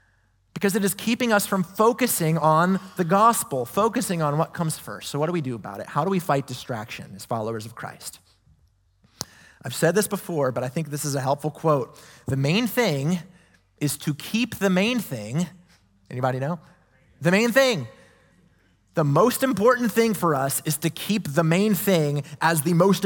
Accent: American